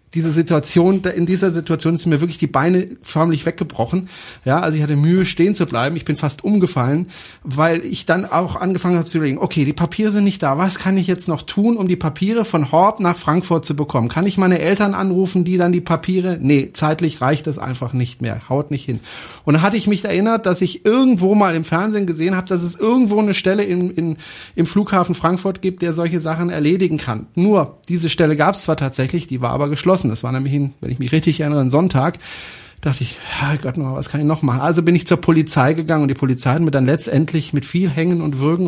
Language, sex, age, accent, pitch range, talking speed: German, male, 30-49, German, 145-185 Hz, 235 wpm